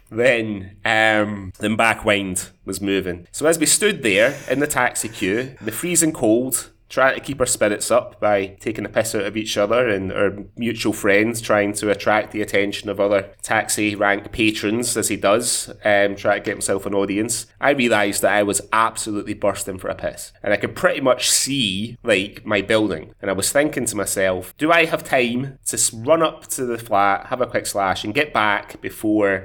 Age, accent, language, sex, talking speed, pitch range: 20-39, British, English, male, 205 wpm, 100-120 Hz